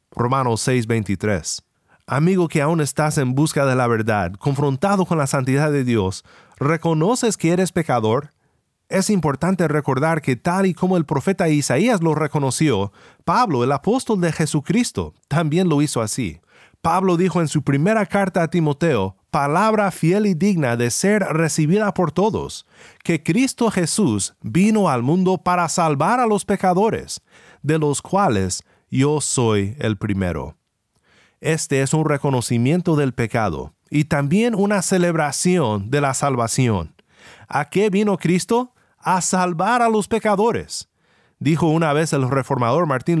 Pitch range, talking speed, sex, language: 130-190 Hz, 145 wpm, male, Spanish